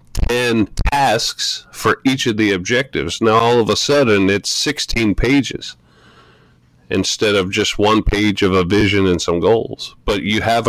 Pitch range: 90-110 Hz